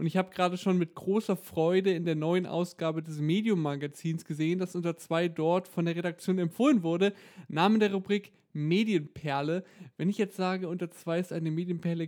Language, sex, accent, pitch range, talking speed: German, male, German, 170-195 Hz, 190 wpm